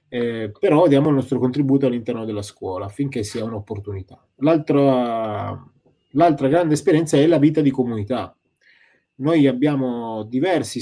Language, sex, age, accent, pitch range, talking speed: Italian, male, 20-39, native, 115-145 Hz, 135 wpm